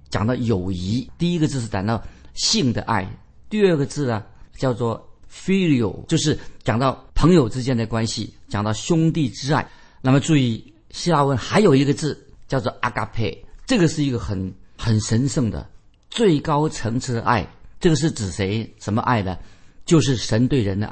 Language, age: Chinese, 50-69